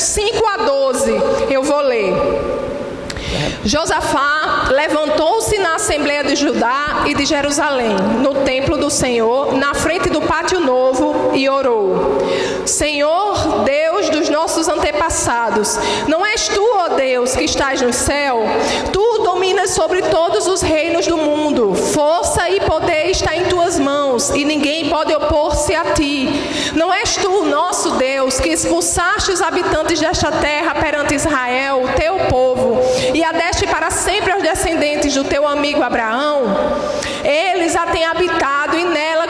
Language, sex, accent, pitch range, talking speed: Portuguese, female, Brazilian, 290-360 Hz, 145 wpm